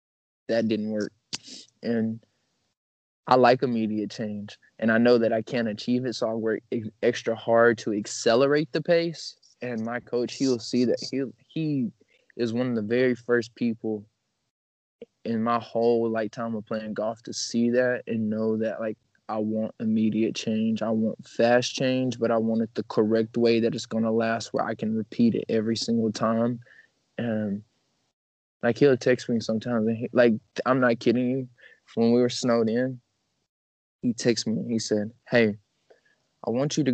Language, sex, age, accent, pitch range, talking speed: English, male, 20-39, American, 110-120 Hz, 180 wpm